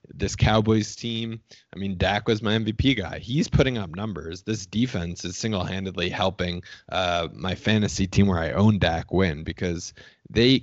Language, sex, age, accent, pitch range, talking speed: English, male, 20-39, American, 90-110 Hz, 170 wpm